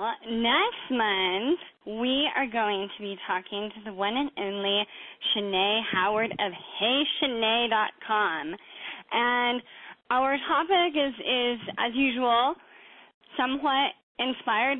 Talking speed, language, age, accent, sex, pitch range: 105 wpm, English, 10-29, American, female, 200-265 Hz